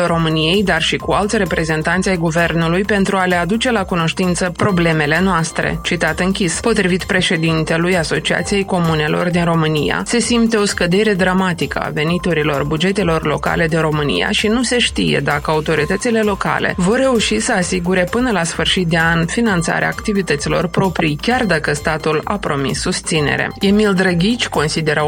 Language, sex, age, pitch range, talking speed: Romanian, female, 20-39, 165-205 Hz, 150 wpm